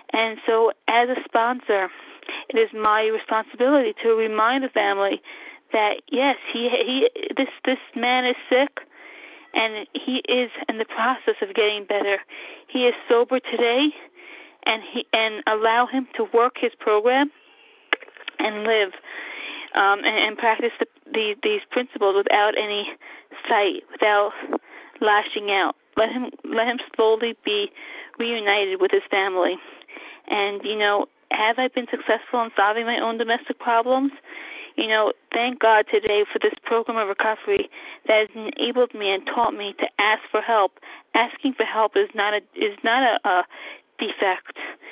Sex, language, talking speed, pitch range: female, English, 155 wpm, 220-300 Hz